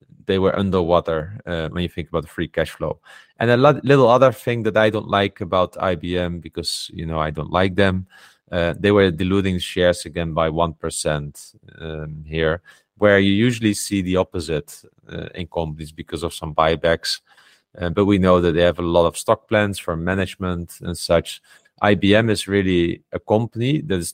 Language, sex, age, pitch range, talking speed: English, male, 30-49, 85-100 Hz, 190 wpm